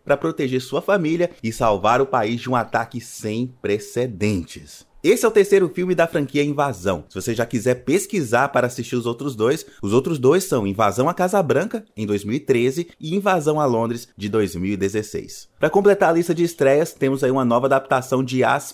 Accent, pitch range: Brazilian, 120-170 Hz